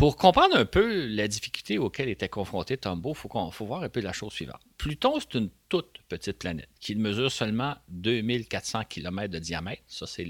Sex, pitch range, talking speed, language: male, 90-120 Hz, 200 wpm, French